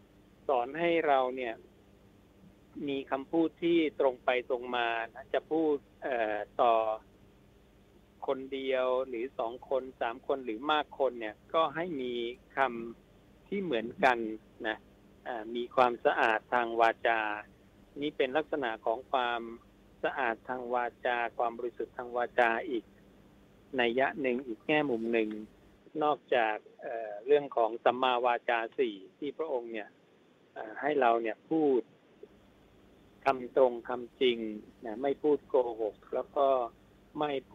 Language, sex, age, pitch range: Thai, male, 60-79, 110-140 Hz